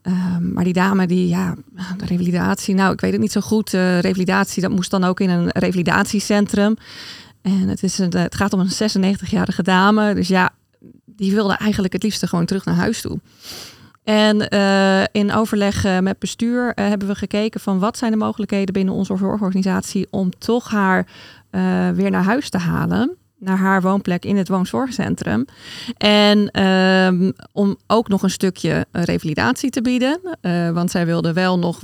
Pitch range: 185-210 Hz